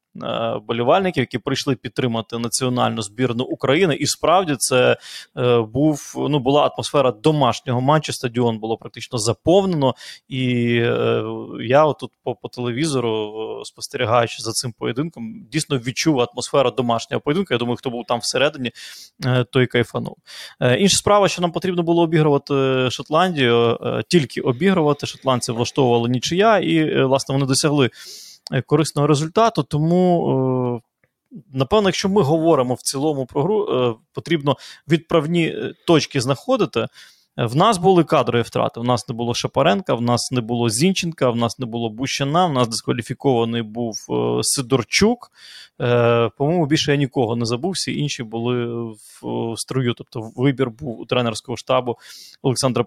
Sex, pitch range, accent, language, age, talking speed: male, 120-155 Hz, native, Ukrainian, 20-39, 140 wpm